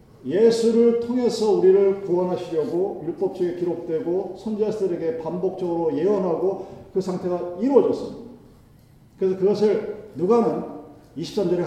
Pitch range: 140-205 Hz